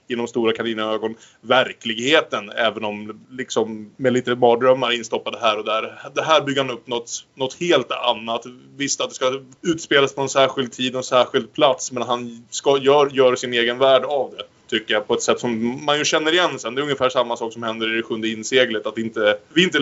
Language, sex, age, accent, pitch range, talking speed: Swedish, male, 20-39, Norwegian, 120-145 Hz, 220 wpm